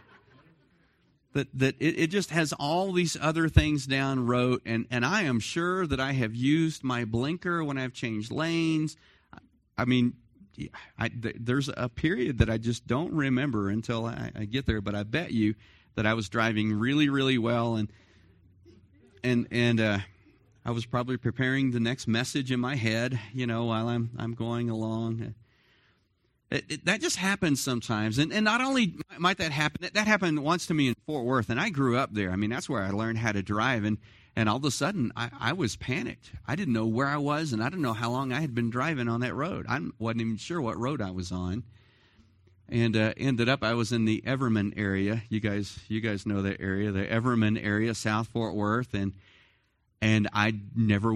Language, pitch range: English, 110-135 Hz